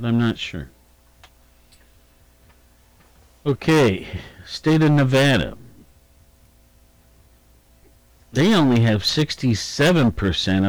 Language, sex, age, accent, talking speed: English, male, 60-79, American, 60 wpm